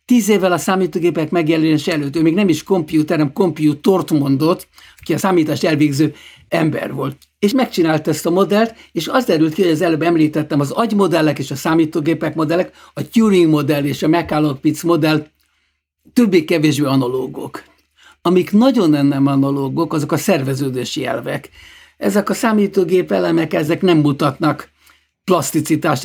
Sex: male